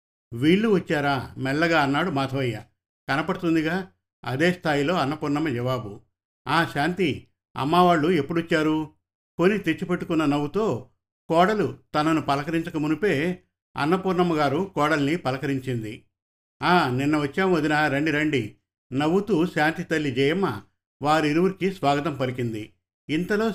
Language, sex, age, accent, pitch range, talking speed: Telugu, male, 50-69, native, 130-165 Hz, 95 wpm